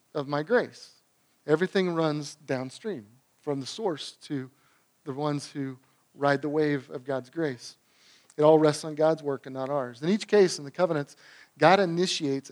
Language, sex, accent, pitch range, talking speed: English, male, American, 160-200 Hz, 175 wpm